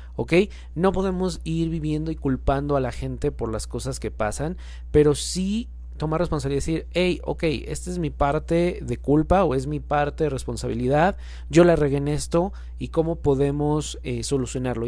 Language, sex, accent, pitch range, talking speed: Spanish, male, Mexican, 125-155 Hz, 180 wpm